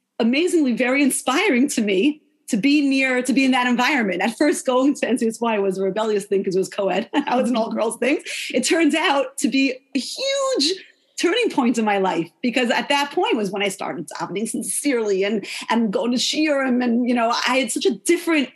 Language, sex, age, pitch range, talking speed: English, female, 30-49, 205-270 Hz, 215 wpm